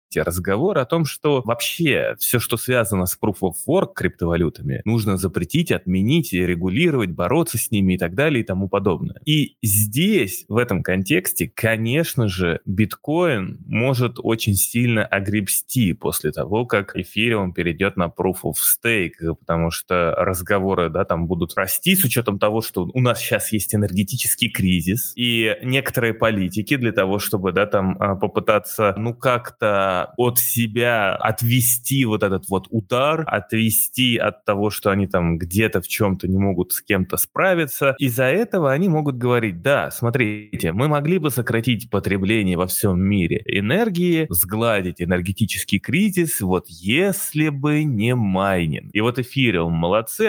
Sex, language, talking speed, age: male, Russian, 145 wpm, 20-39